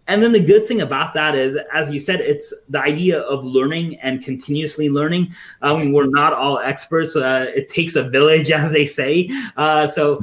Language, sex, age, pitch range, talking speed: English, male, 30-49, 130-150 Hz, 205 wpm